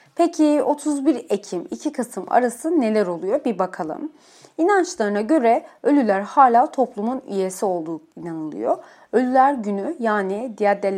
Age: 30-49